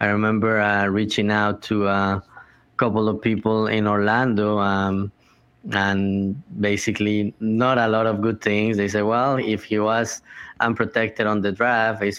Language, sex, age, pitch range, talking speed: English, male, 20-39, 100-115 Hz, 160 wpm